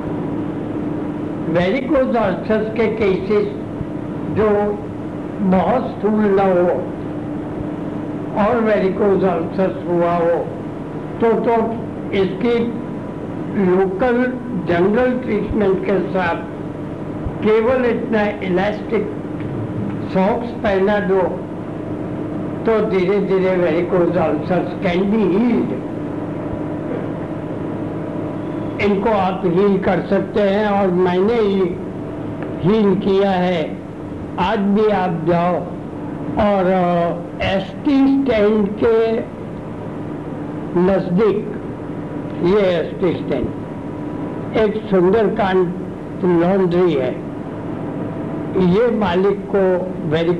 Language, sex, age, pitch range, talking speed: Hindi, male, 60-79, 165-210 Hz, 80 wpm